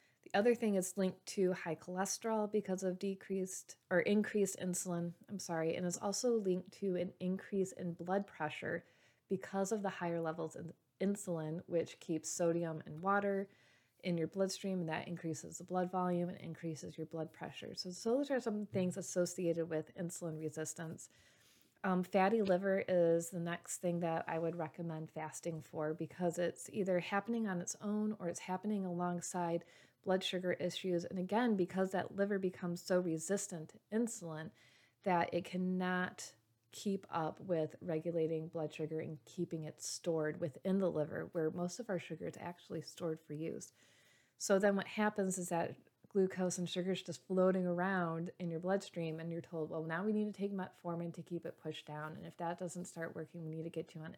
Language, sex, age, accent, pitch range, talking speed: English, female, 30-49, American, 165-190 Hz, 185 wpm